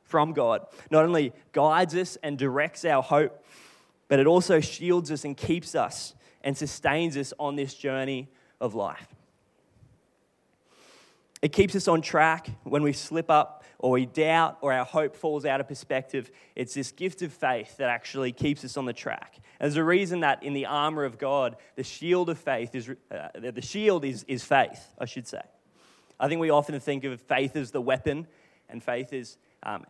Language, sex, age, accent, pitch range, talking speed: English, male, 20-39, Australian, 120-150 Hz, 190 wpm